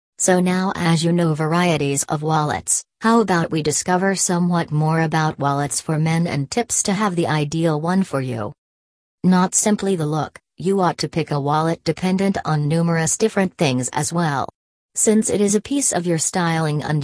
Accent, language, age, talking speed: American, English, 40-59, 185 wpm